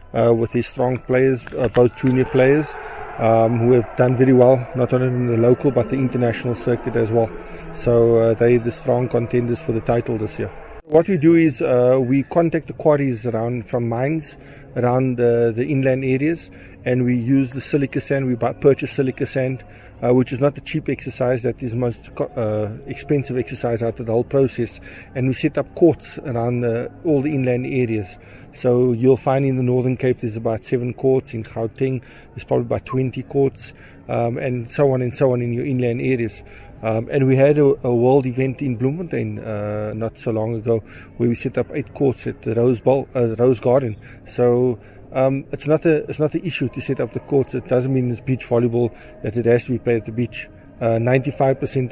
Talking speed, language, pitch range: 215 wpm, English, 120-135 Hz